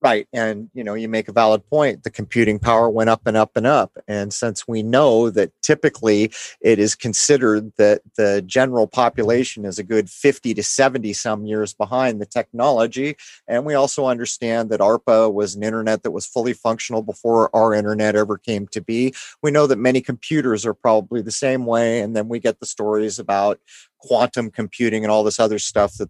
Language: English